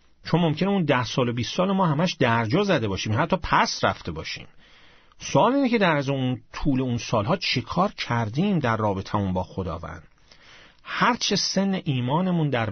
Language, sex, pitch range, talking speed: Persian, male, 110-165 Hz, 175 wpm